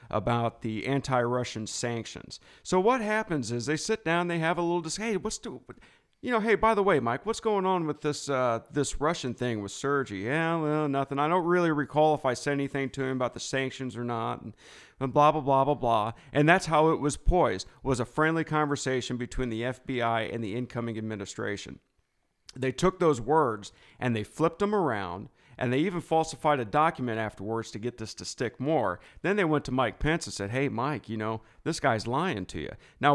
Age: 40-59